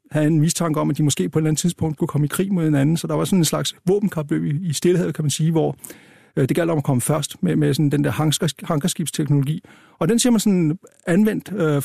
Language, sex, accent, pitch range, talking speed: Danish, male, native, 145-175 Hz, 260 wpm